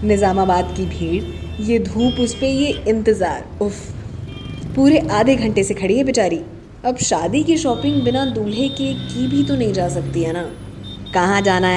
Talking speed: 175 wpm